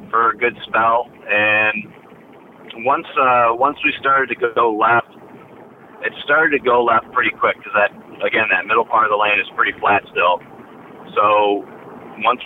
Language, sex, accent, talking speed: English, male, American, 170 wpm